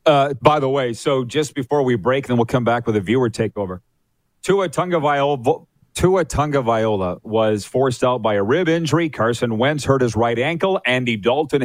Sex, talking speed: male, 185 wpm